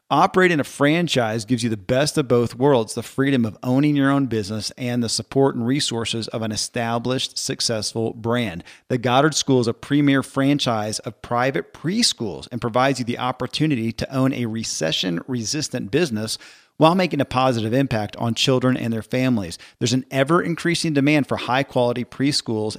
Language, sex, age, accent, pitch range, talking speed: English, male, 40-59, American, 115-140 Hz, 170 wpm